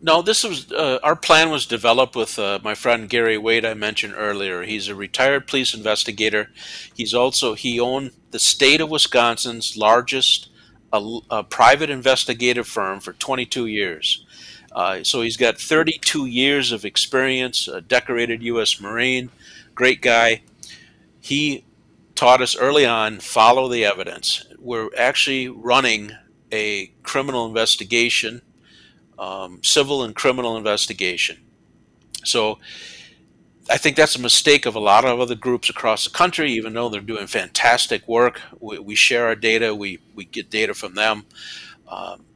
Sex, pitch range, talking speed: male, 110-130 Hz, 150 wpm